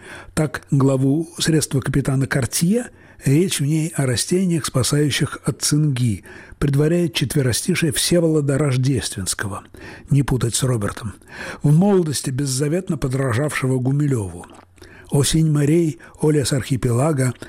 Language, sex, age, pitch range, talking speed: Russian, male, 60-79, 120-155 Hz, 100 wpm